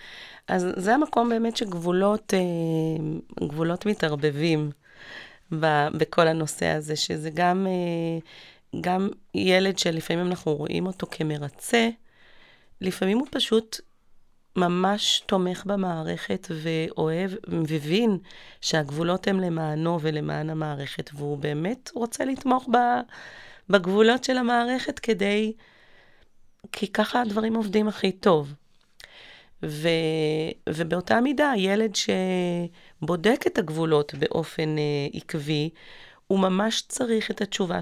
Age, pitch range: 30-49, 155-205 Hz